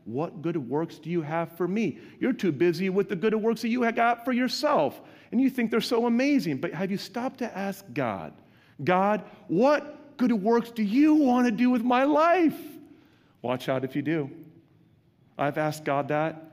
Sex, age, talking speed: male, 40-59, 200 wpm